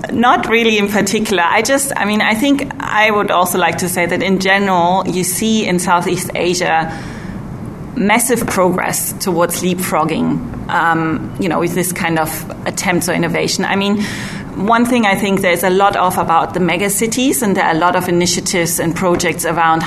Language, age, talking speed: English, 30-49, 185 wpm